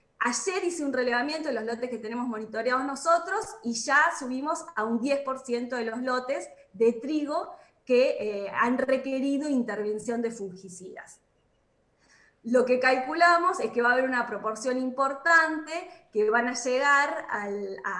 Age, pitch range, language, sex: 20-39, 225-300 Hz, Spanish, female